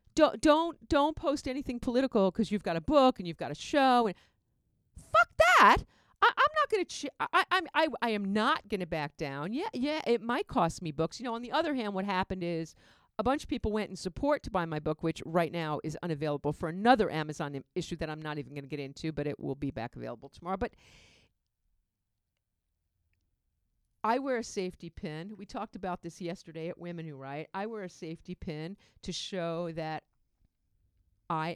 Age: 50-69